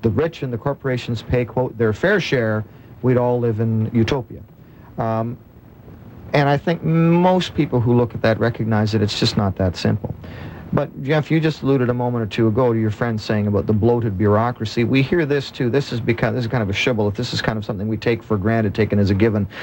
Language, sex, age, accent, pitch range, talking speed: English, male, 40-59, American, 105-130 Hz, 230 wpm